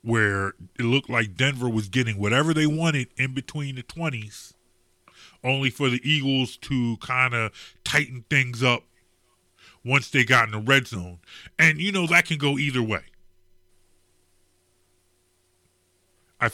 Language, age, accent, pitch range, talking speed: English, 30-49, American, 90-135 Hz, 145 wpm